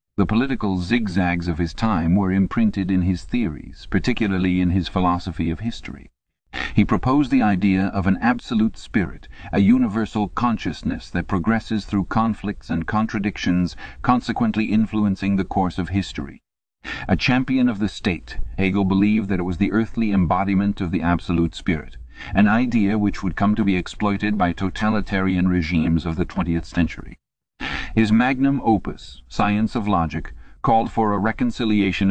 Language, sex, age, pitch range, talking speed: English, male, 50-69, 85-105 Hz, 155 wpm